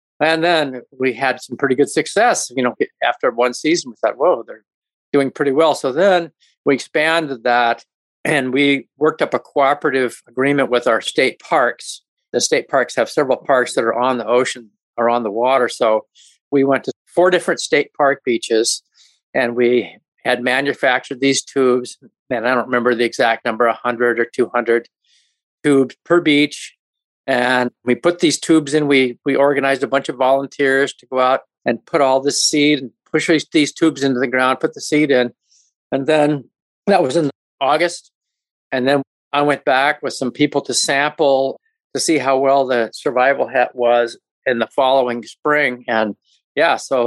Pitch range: 120-150 Hz